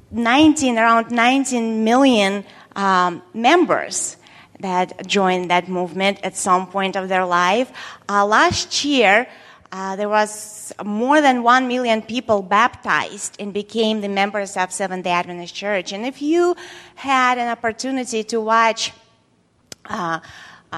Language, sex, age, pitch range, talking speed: English, female, 30-49, 200-255 Hz, 130 wpm